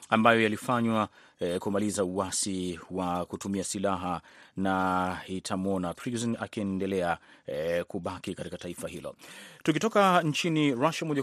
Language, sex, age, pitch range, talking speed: Swahili, male, 30-49, 95-120 Hz, 110 wpm